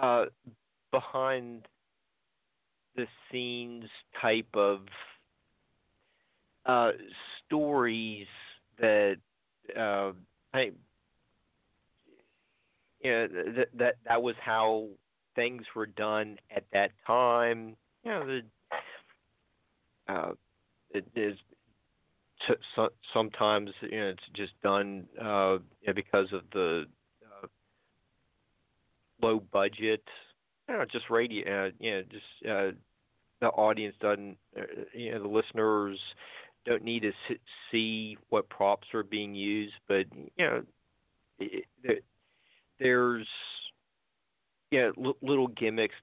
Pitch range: 105-120 Hz